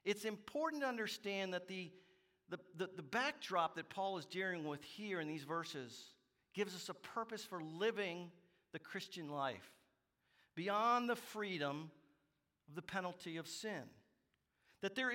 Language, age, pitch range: English, 50-69, 145-205 Hz